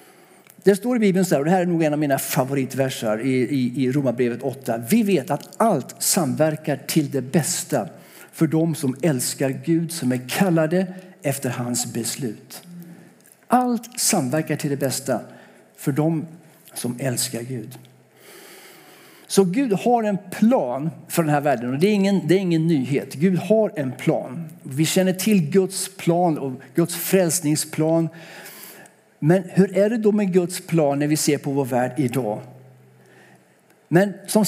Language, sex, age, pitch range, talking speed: Swedish, male, 60-79, 140-195 Hz, 165 wpm